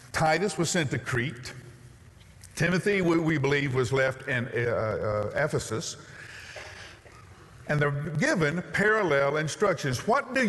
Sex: male